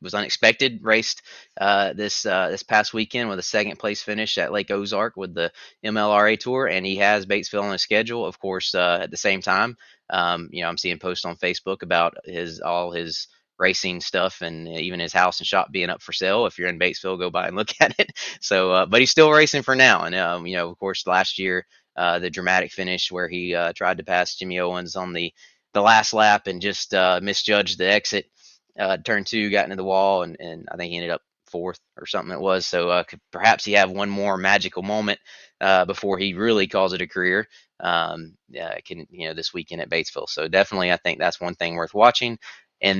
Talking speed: 230 wpm